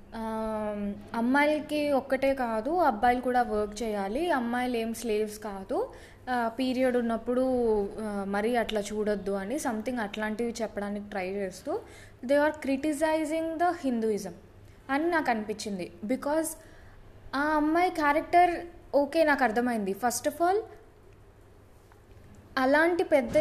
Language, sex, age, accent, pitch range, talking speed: Telugu, female, 20-39, native, 220-300 Hz, 110 wpm